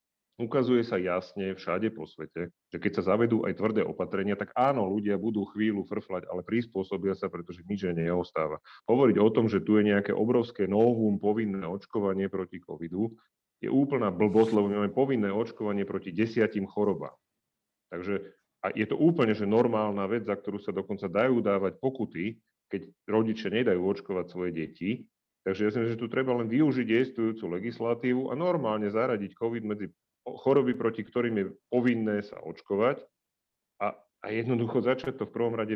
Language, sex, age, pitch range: Slovak, male, 40-59, 95-115 Hz